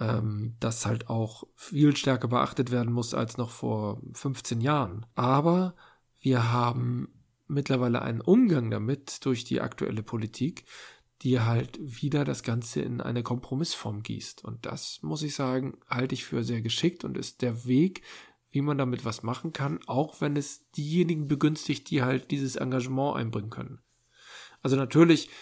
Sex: male